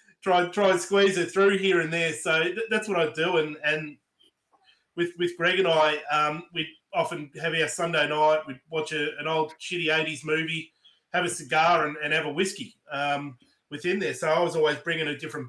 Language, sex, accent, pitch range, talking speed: English, male, Australian, 150-185 Hz, 215 wpm